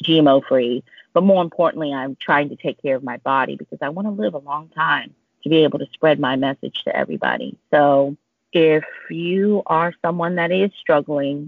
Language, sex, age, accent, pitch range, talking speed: English, female, 30-49, American, 140-170 Hz, 200 wpm